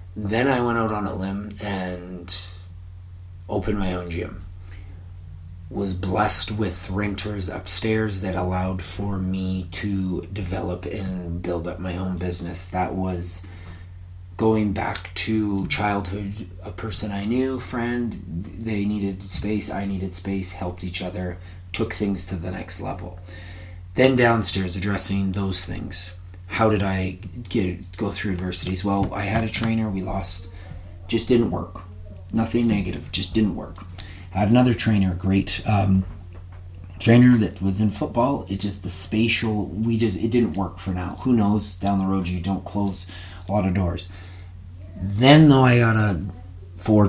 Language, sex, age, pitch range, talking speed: English, male, 30-49, 90-105 Hz, 155 wpm